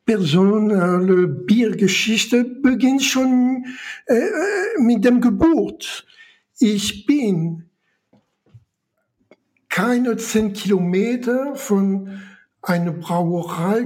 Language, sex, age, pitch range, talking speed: German, male, 60-79, 175-230 Hz, 70 wpm